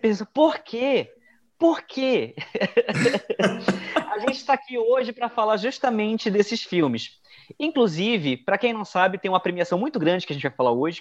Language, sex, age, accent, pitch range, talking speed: Portuguese, male, 20-39, Brazilian, 140-205 Hz, 170 wpm